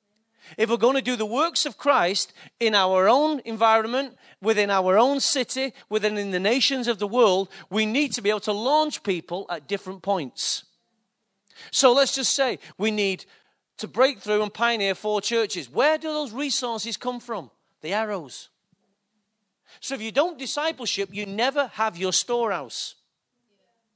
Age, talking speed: 40-59, 165 wpm